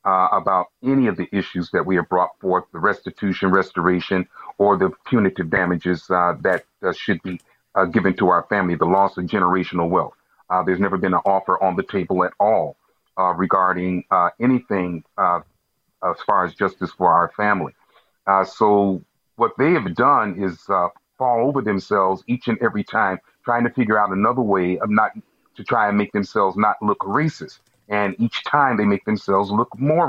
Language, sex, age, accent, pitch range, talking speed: English, male, 40-59, American, 95-115 Hz, 190 wpm